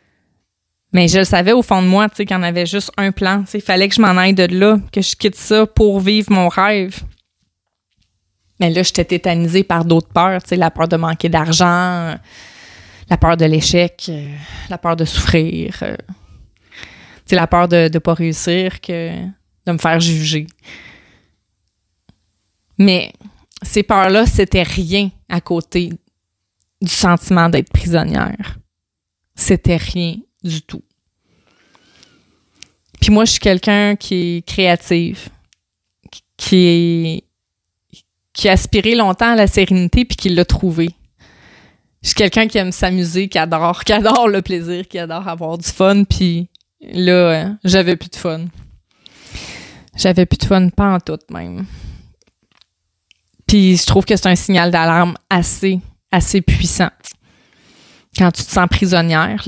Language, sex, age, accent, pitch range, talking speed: French, female, 20-39, Canadian, 160-190 Hz, 150 wpm